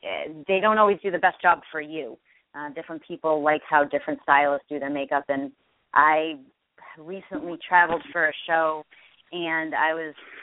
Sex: female